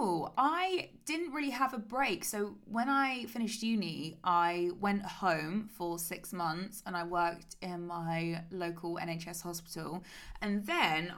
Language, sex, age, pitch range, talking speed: English, female, 20-39, 165-200 Hz, 145 wpm